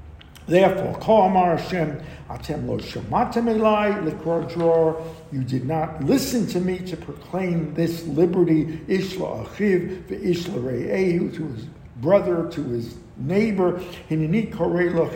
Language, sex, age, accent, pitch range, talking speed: English, male, 60-79, American, 145-180 Hz, 105 wpm